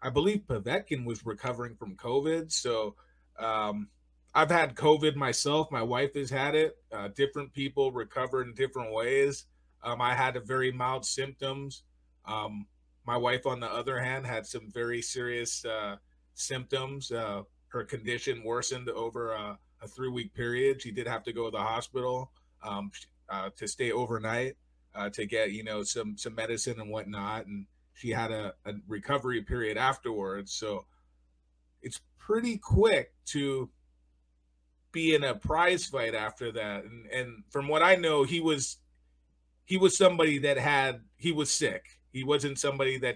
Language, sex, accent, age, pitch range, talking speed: English, male, American, 30-49, 105-135 Hz, 165 wpm